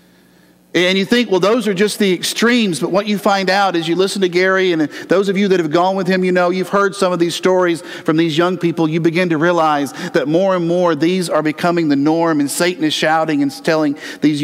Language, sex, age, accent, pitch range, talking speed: English, male, 50-69, American, 140-180 Hz, 250 wpm